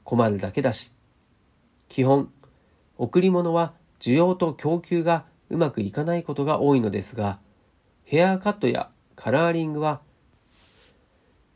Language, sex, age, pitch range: Japanese, male, 40-59, 105-160 Hz